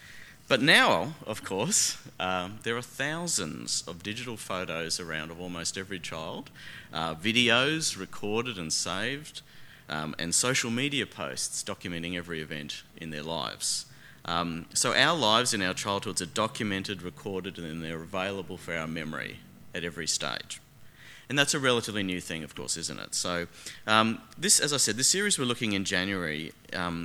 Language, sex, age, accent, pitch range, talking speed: English, male, 30-49, Australian, 80-110 Hz, 165 wpm